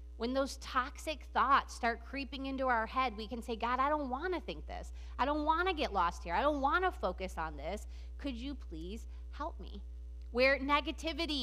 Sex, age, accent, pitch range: female, 30-49, American, 180-270 Hz